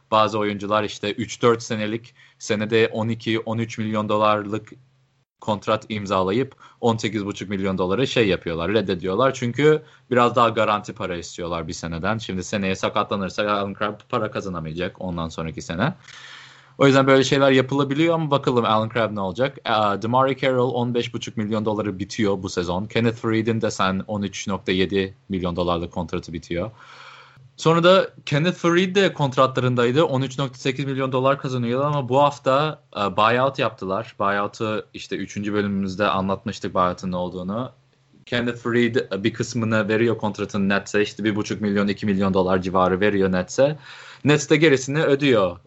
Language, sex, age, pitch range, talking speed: Turkish, male, 30-49, 100-130 Hz, 135 wpm